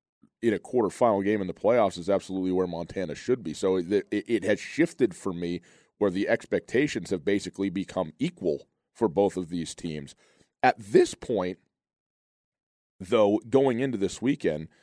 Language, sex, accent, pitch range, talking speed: English, male, American, 85-110 Hz, 165 wpm